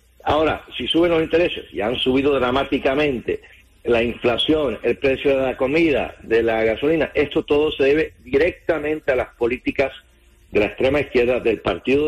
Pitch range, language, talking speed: 125-170 Hz, English, 165 wpm